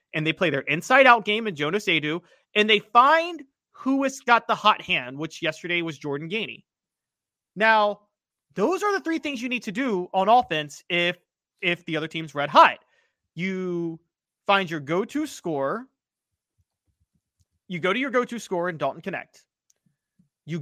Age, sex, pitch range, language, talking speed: 30-49, male, 160-230 Hz, English, 165 wpm